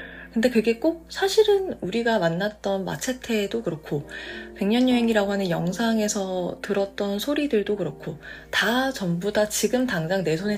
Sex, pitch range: female, 170-230 Hz